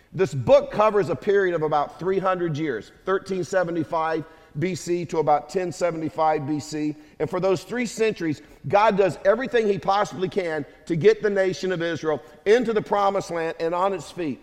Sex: male